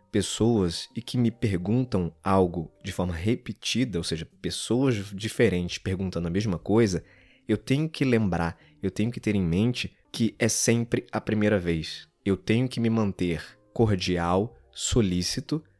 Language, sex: Portuguese, male